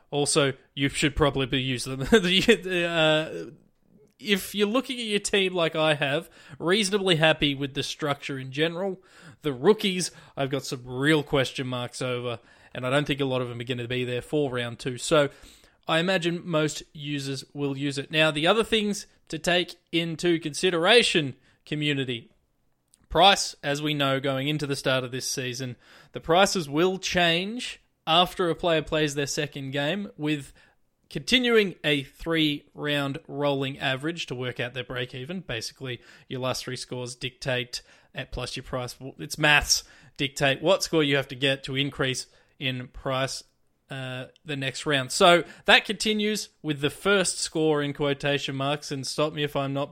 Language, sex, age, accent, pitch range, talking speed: English, male, 20-39, Australian, 135-170 Hz, 170 wpm